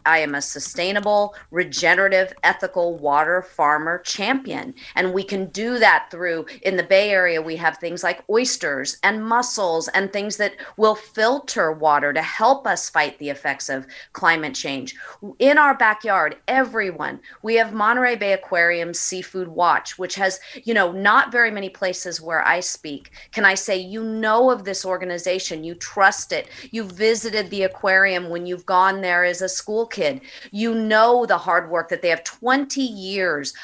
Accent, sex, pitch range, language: American, female, 165-215 Hz, English